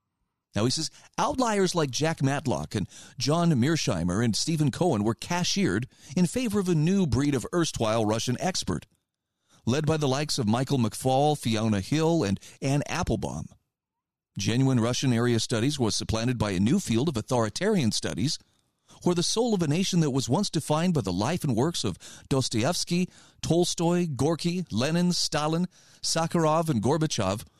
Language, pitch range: English, 115-170 Hz